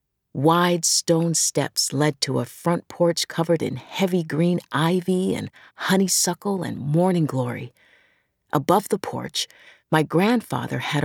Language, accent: English, American